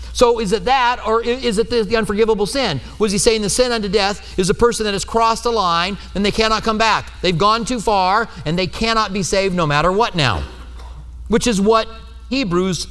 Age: 40-59